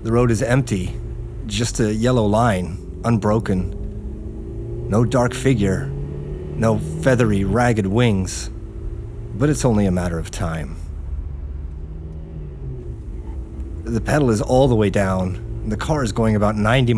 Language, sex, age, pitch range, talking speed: English, male, 30-49, 95-120 Hz, 130 wpm